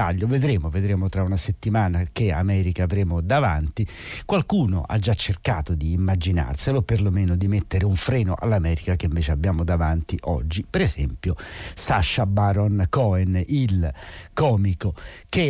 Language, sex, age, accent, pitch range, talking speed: Italian, male, 60-79, native, 90-115 Hz, 130 wpm